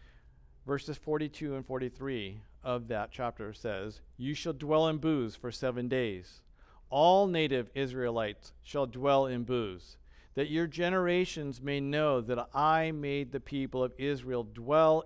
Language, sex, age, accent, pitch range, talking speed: English, male, 50-69, American, 90-145 Hz, 145 wpm